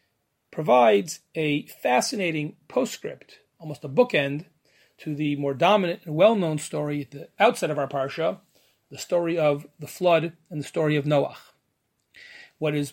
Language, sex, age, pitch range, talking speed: English, male, 30-49, 150-190 Hz, 150 wpm